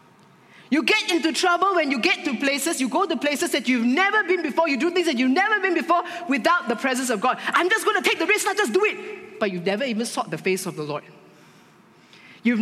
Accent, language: Malaysian, English